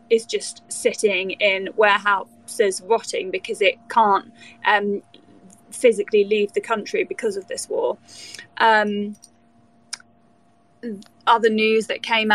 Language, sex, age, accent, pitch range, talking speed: English, female, 20-39, British, 205-235 Hz, 110 wpm